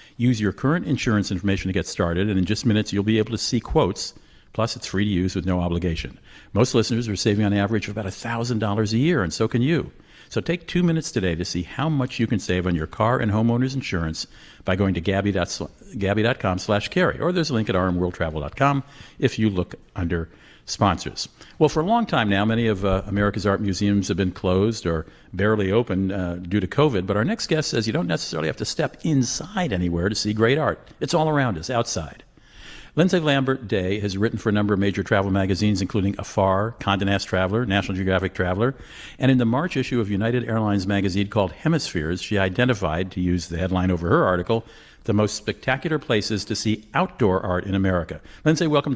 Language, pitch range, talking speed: English, 95-120 Hz, 210 wpm